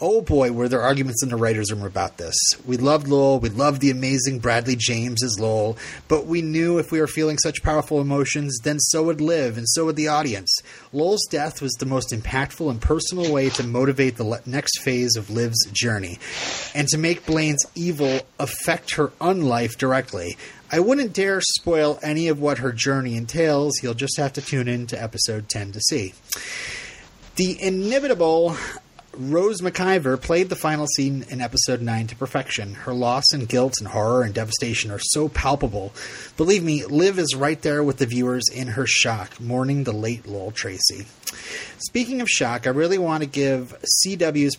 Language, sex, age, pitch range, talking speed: English, male, 30-49, 120-155 Hz, 185 wpm